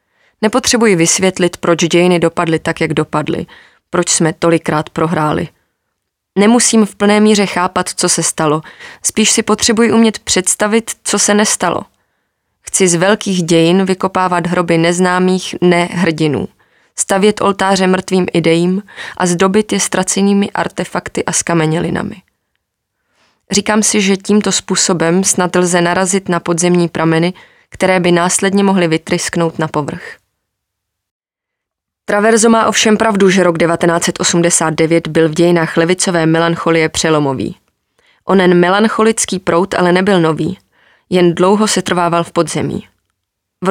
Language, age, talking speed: Czech, 20-39, 125 wpm